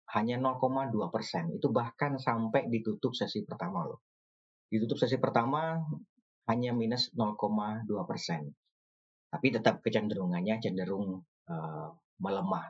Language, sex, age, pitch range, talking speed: Indonesian, male, 30-49, 105-140 Hz, 110 wpm